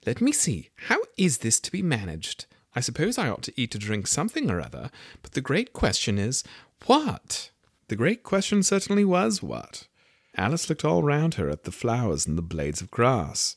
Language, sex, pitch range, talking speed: English, male, 90-130 Hz, 200 wpm